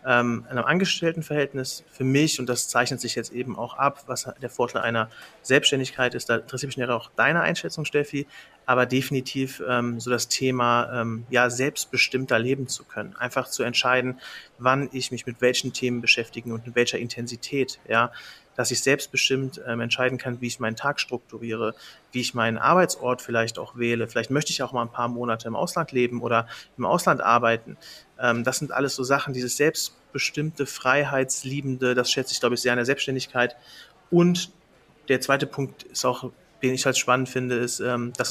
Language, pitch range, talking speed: German, 120-135 Hz, 190 wpm